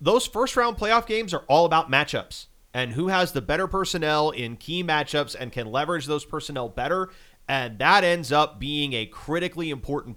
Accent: American